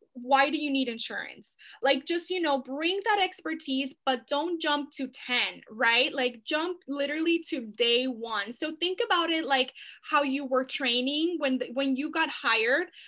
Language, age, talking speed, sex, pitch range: English, 10-29, 175 wpm, female, 250-295 Hz